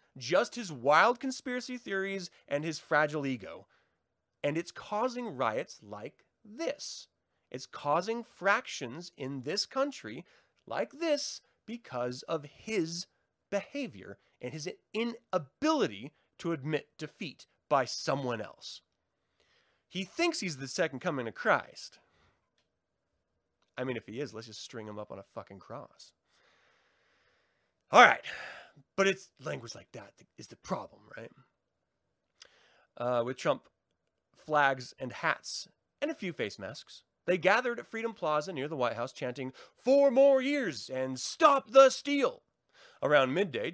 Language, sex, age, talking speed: English, male, 30-49, 135 wpm